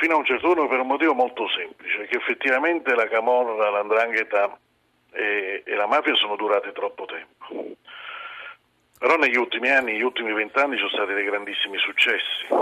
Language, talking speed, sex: Italian, 170 wpm, male